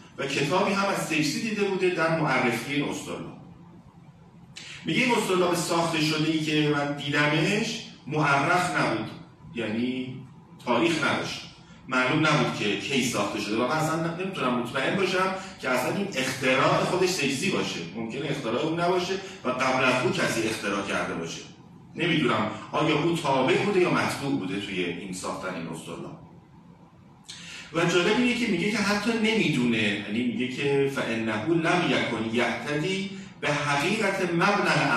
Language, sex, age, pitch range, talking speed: Persian, male, 40-59, 120-175 Hz, 150 wpm